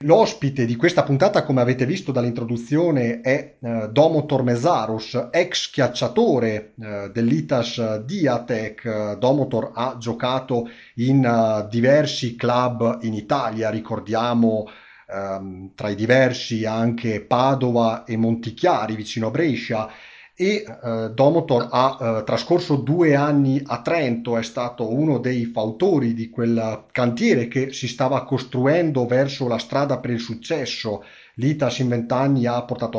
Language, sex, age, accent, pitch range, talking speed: Italian, male, 30-49, native, 115-140 Hz, 120 wpm